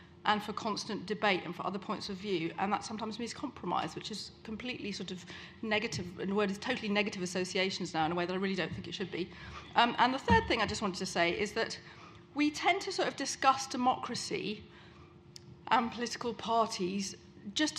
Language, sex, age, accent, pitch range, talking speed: English, female, 40-59, British, 195-240 Hz, 215 wpm